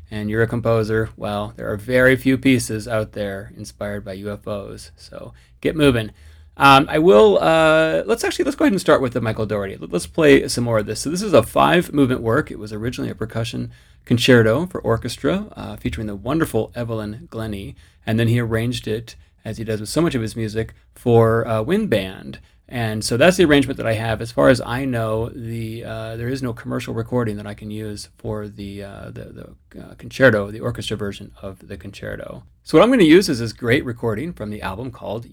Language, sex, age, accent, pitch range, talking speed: English, male, 30-49, American, 105-125 Hz, 215 wpm